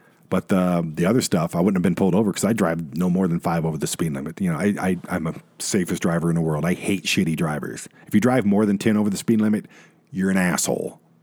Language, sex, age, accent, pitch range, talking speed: English, male, 40-59, American, 85-125 Hz, 265 wpm